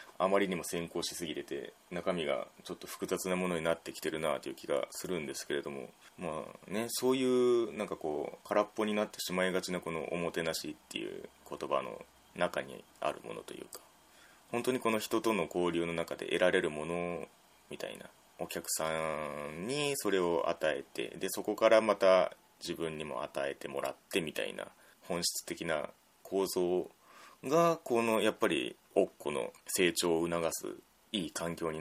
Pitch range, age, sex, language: 85-115 Hz, 20-39, male, Japanese